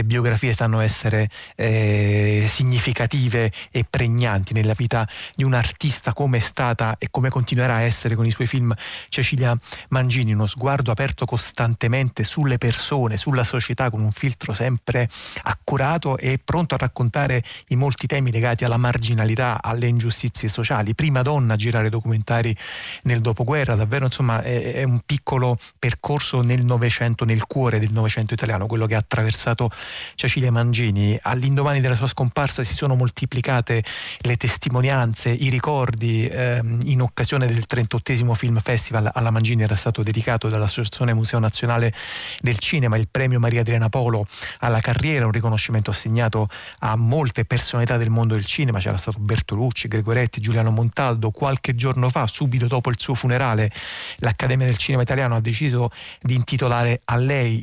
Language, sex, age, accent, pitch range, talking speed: Italian, male, 30-49, native, 115-130 Hz, 155 wpm